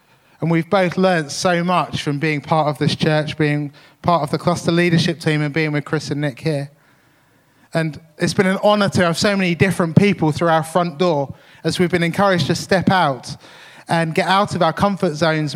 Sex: male